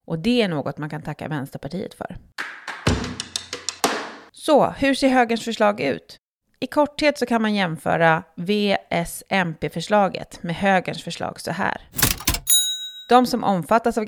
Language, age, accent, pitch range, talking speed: Swedish, 30-49, native, 165-235 Hz, 130 wpm